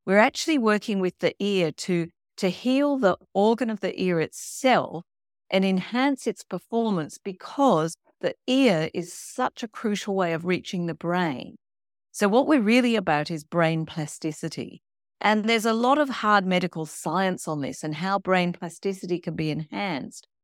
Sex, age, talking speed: female, 50-69, 165 wpm